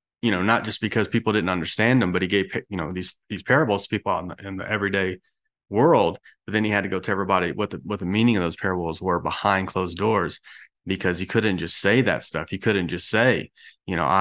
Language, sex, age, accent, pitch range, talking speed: English, male, 30-49, American, 95-120 Hz, 250 wpm